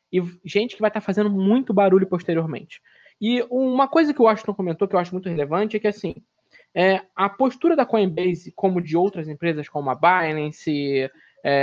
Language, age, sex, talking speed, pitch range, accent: Portuguese, 20-39, male, 195 wpm, 175-235 Hz, Brazilian